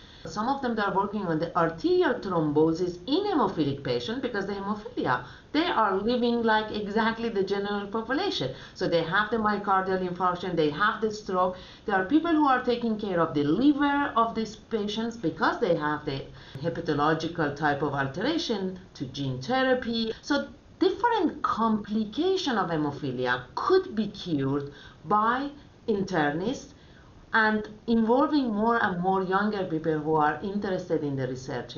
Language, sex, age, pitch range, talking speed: English, female, 50-69, 165-230 Hz, 150 wpm